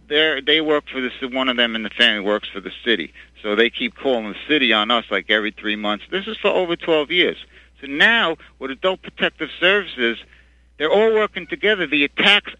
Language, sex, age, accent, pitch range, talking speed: English, male, 60-79, American, 125-195 Hz, 210 wpm